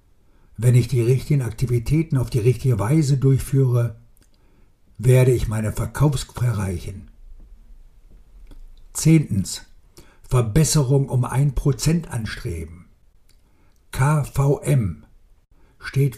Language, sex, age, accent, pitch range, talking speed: German, male, 60-79, German, 110-145 Hz, 80 wpm